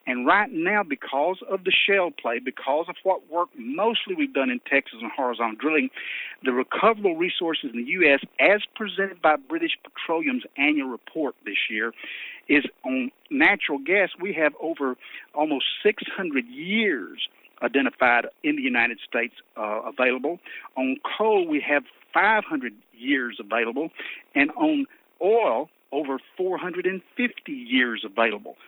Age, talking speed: 50-69, 140 wpm